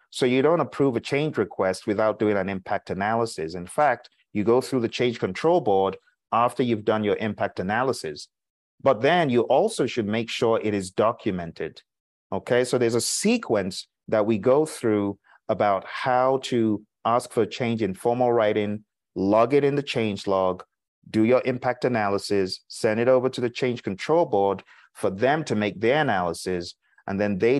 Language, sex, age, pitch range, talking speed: English, male, 30-49, 100-130 Hz, 180 wpm